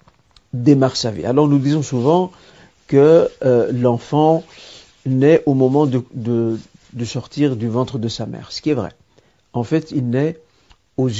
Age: 50-69